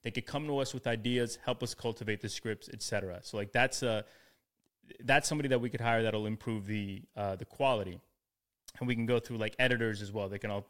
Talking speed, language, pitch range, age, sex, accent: 240 wpm, English, 110-135 Hz, 20-39, male, American